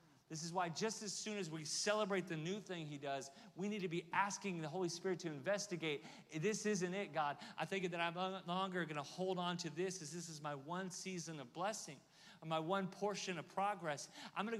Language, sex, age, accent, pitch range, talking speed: English, male, 40-59, American, 145-185 Hz, 220 wpm